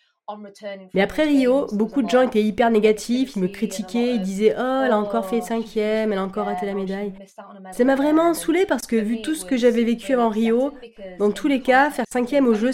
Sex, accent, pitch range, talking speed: female, French, 190-235 Hz, 235 wpm